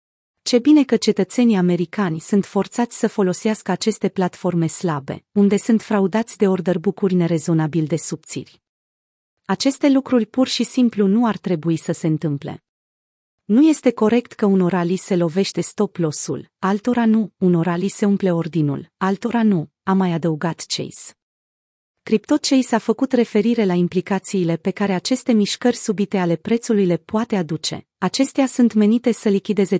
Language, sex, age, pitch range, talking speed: Romanian, female, 30-49, 175-225 Hz, 150 wpm